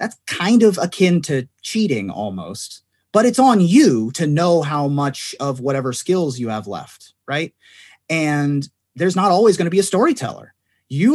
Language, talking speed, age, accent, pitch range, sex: English, 170 wpm, 30-49, American, 135-190 Hz, male